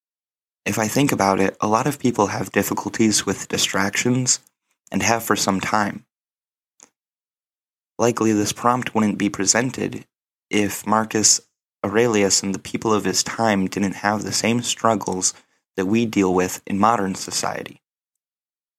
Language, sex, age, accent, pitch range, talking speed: English, male, 20-39, American, 100-115 Hz, 145 wpm